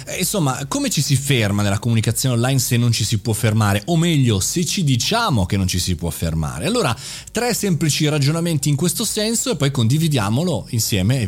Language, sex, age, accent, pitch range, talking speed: Italian, male, 20-39, native, 110-160 Hz, 195 wpm